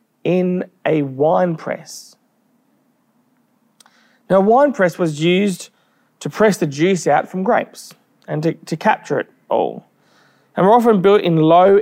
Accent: Australian